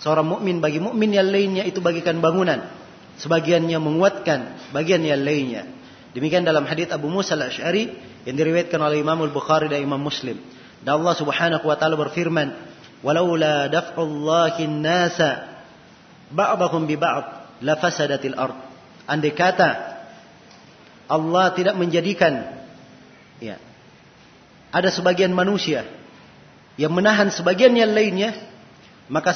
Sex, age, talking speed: male, 40-59, 120 wpm